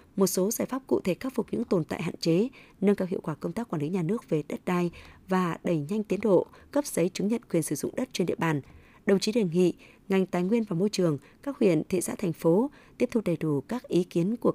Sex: female